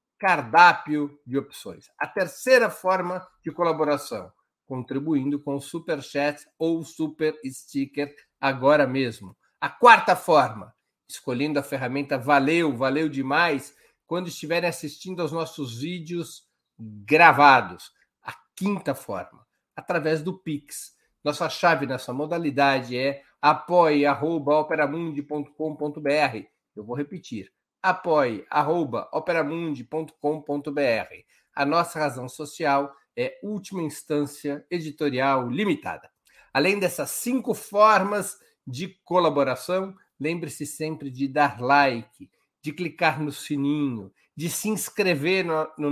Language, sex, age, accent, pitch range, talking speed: Portuguese, male, 50-69, Brazilian, 140-170 Hz, 100 wpm